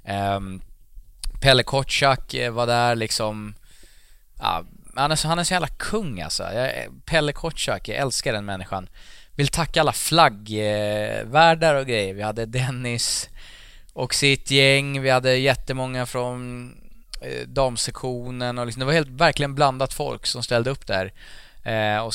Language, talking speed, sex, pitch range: English, 140 wpm, male, 105-135 Hz